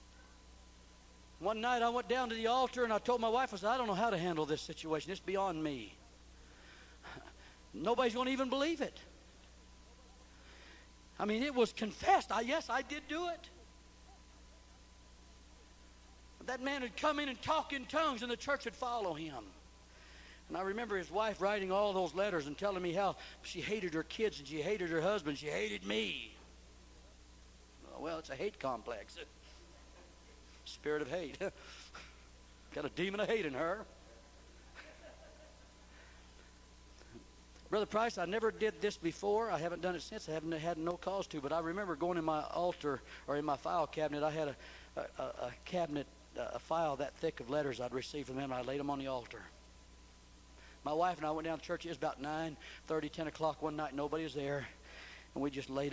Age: 60-79